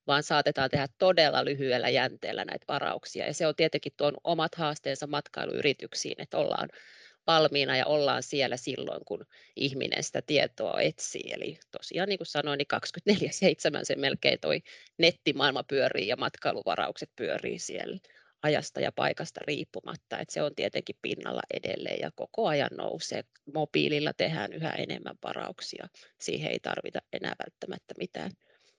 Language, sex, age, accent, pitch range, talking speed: Finnish, female, 30-49, native, 150-200 Hz, 145 wpm